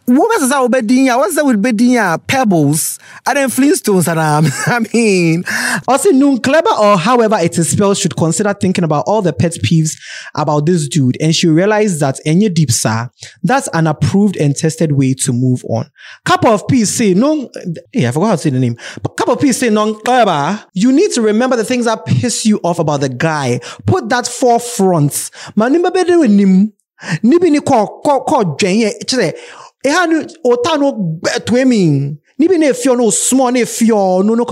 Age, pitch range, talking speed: 20-39, 160-245 Hz, 175 wpm